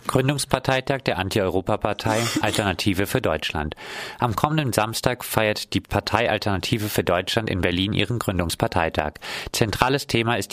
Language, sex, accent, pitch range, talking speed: German, male, German, 95-120 Hz, 125 wpm